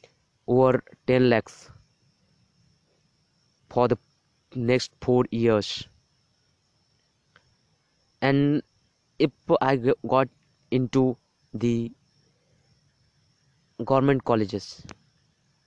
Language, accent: Hindi, native